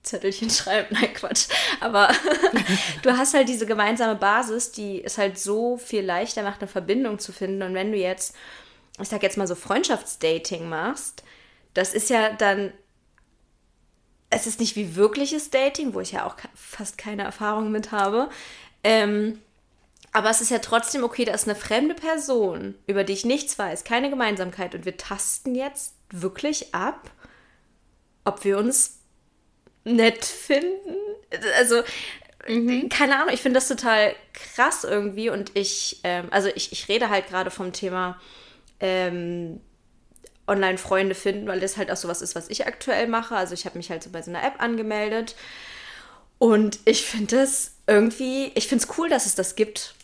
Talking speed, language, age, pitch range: 165 wpm, German, 20-39, 195-240 Hz